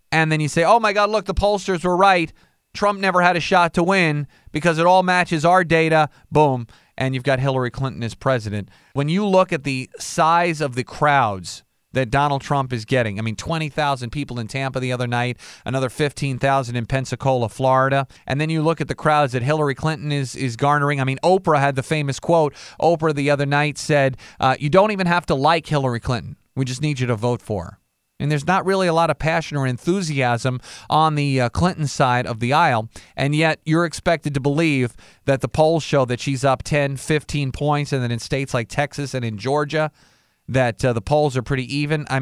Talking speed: 220 wpm